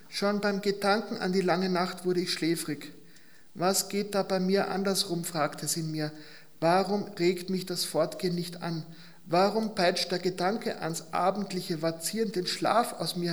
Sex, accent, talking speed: male, German, 165 wpm